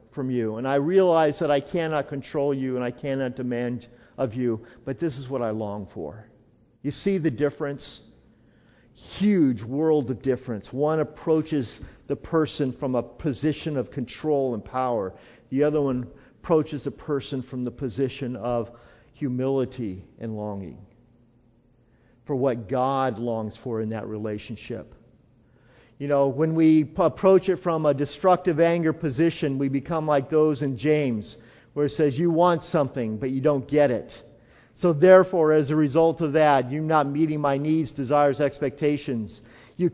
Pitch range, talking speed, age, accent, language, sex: 125-160 Hz, 160 wpm, 50-69, American, English, male